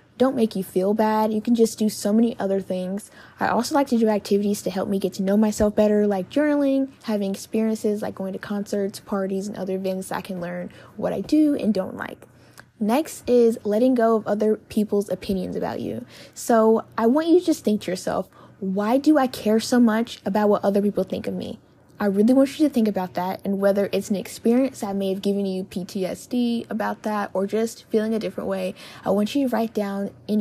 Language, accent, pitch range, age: English, American, 195-235 Hz, 10-29